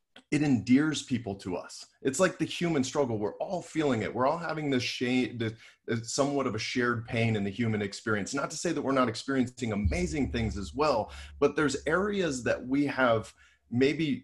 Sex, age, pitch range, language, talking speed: male, 30-49, 105-135 Hz, English, 190 wpm